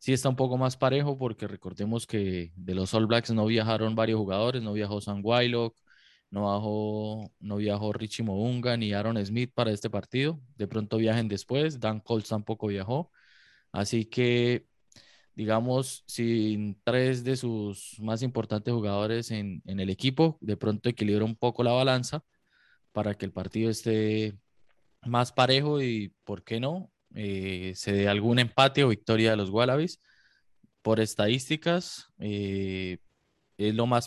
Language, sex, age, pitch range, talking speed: Spanish, male, 20-39, 100-120 Hz, 155 wpm